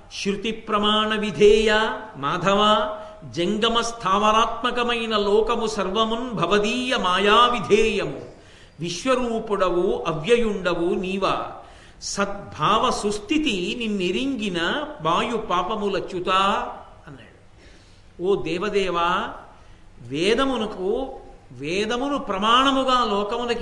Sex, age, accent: male, 50-69, native